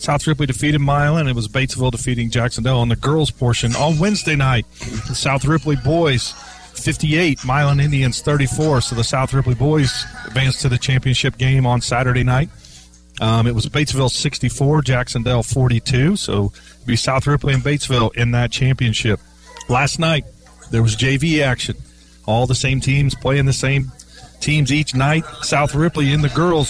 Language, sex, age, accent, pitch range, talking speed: English, male, 40-59, American, 125-150 Hz, 170 wpm